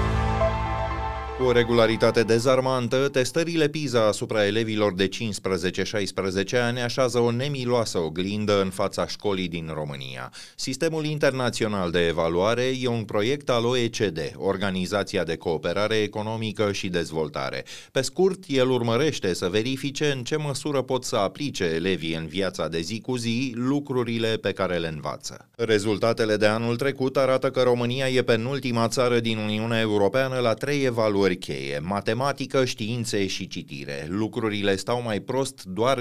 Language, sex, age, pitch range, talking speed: Romanian, male, 30-49, 95-125 Hz, 140 wpm